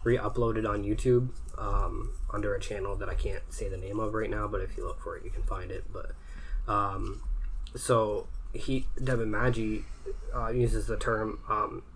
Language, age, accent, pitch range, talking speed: English, 20-39, American, 100-115 Hz, 185 wpm